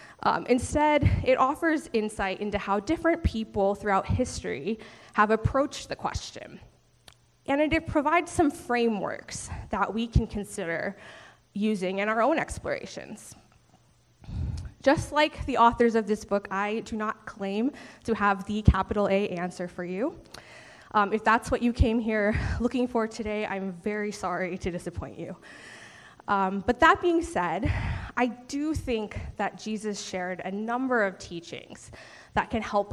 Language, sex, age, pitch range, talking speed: English, female, 20-39, 195-245 Hz, 150 wpm